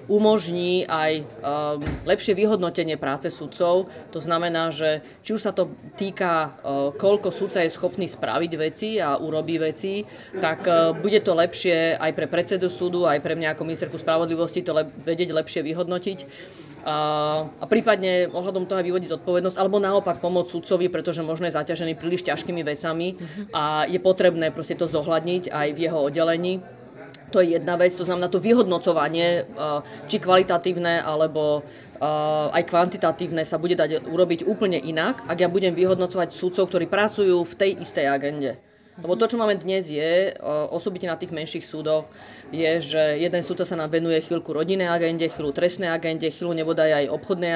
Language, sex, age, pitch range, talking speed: Slovak, female, 30-49, 155-180 Hz, 165 wpm